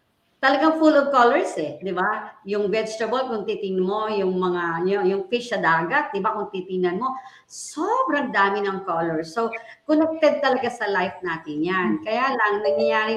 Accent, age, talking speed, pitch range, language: Filipino, 40-59, 170 wpm, 185-255 Hz, English